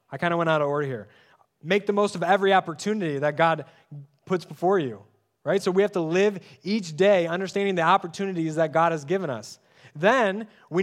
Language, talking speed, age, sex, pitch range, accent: English, 205 wpm, 20-39, male, 125-170 Hz, American